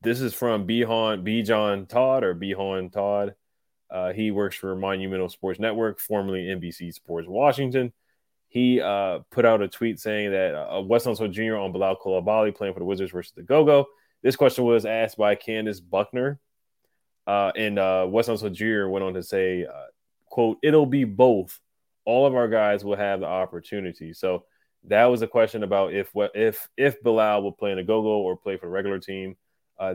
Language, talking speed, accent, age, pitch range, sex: English, 190 wpm, American, 20-39, 95-115 Hz, male